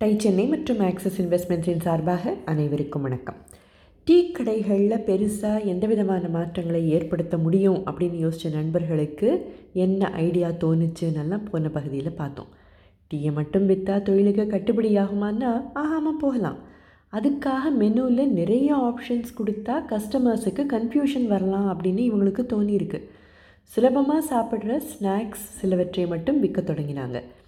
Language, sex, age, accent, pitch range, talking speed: Tamil, female, 20-39, native, 165-220 Hz, 110 wpm